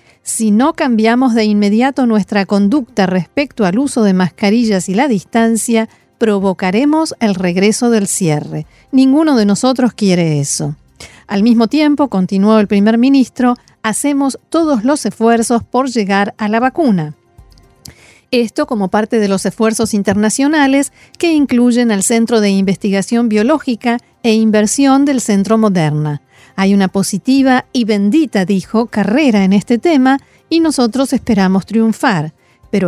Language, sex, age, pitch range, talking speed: Spanish, female, 50-69, 200-255 Hz, 135 wpm